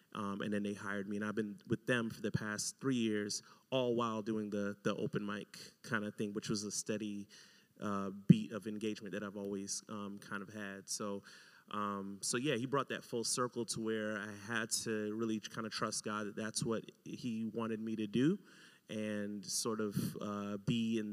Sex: male